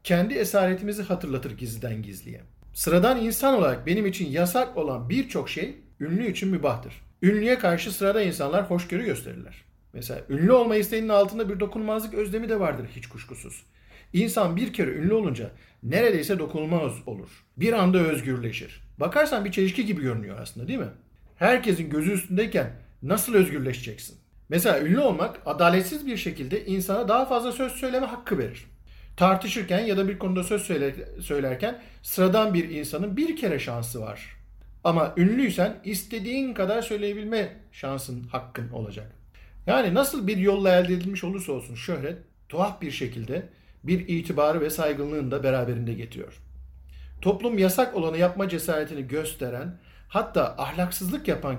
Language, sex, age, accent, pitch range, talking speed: Turkish, male, 50-69, native, 130-205 Hz, 140 wpm